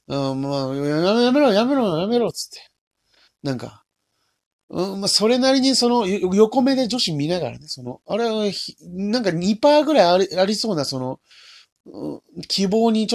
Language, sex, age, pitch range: Japanese, male, 40-59, 145-240 Hz